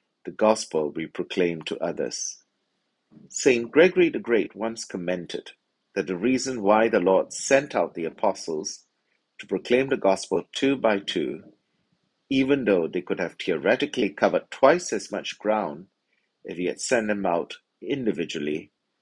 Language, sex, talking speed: English, male, 150 wpm